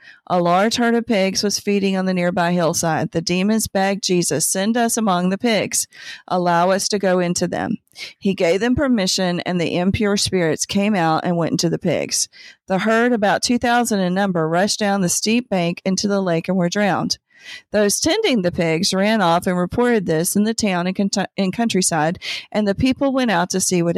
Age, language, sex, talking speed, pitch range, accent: 40-59, English, female, 200 wpm, 175-220 Hz, American